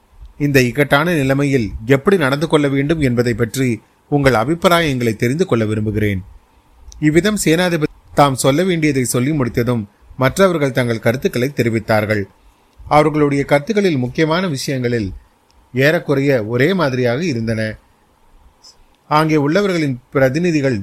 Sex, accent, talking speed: male, native, 90 wpm